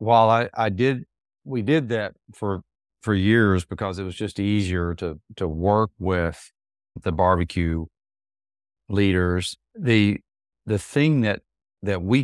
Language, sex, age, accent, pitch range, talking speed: English, male, 40-59, American, 90-110 Hz, 135 wpm